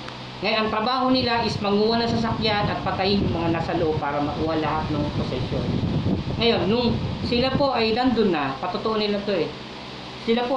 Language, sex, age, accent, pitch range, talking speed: Filipino, female, 20-39, native, 150-220 Hz, 180 wpm